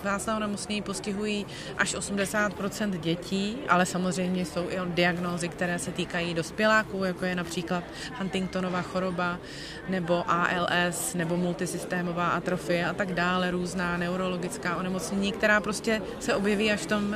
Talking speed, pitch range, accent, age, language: 135 wpm, 185-225 Hz, native, 30-49, Czech